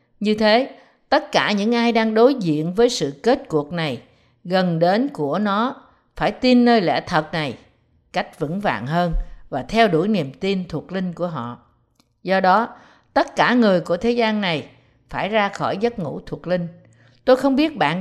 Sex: female